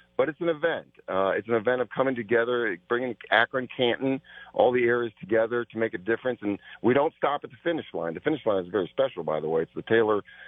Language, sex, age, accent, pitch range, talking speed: English, male, 40-59, American, 105-130 Hz, 240 wpm